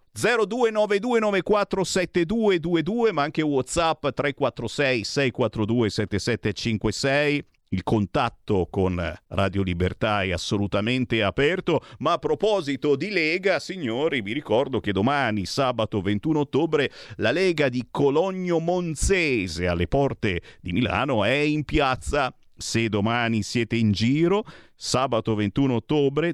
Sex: male